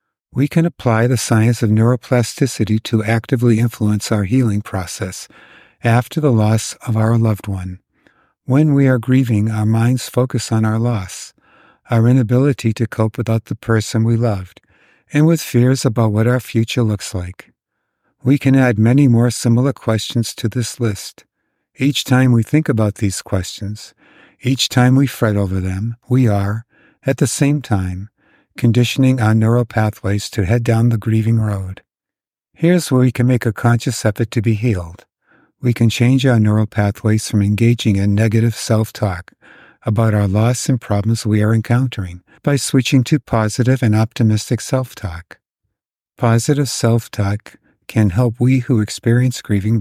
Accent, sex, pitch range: American, male, 110-125 Hz